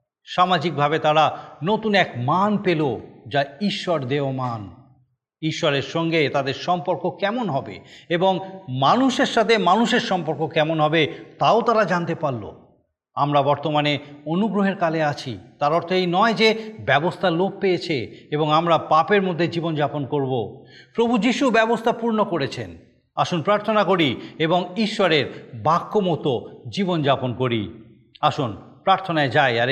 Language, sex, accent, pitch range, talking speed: Bengali, male, native, 130-170 Hz, 130 wpm